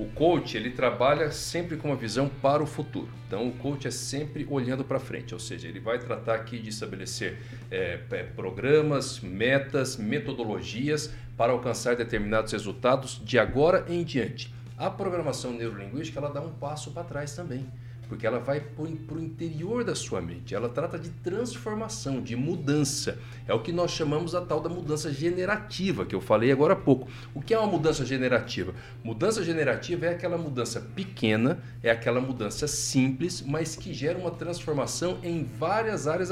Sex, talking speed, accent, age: male, 165 wpm, Brazilian, 60-79